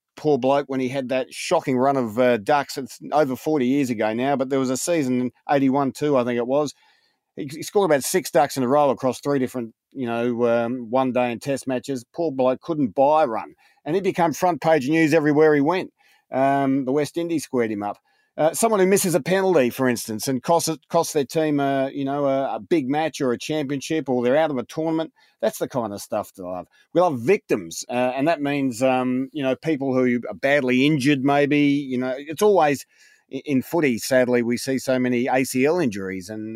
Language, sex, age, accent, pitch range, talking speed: English, male, 40-59, Australian, 125-150 Hz, 225 wpm